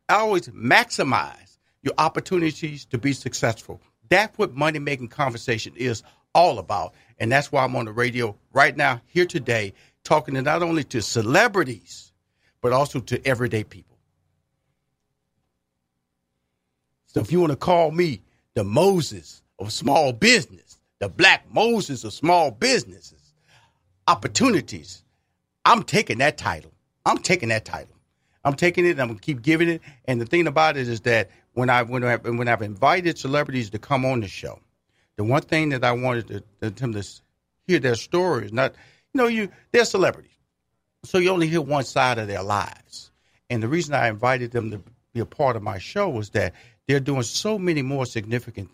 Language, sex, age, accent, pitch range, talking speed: English, male, 50-69, American, 105-145 Hz, 175 wpm